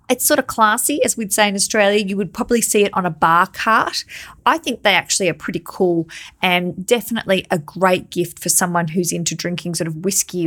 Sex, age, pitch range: female, 20-39, 170-215 Hz